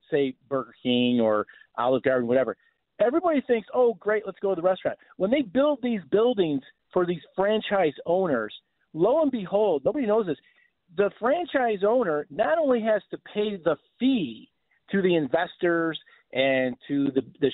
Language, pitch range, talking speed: English, 165-240 Hz, 165 wpm